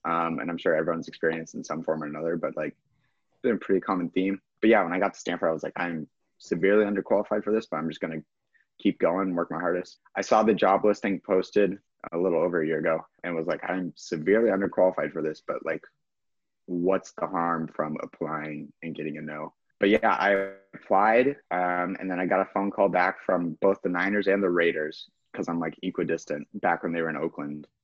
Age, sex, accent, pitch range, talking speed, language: 30-49, male, American, 85-100 Hz, 230 wpm, English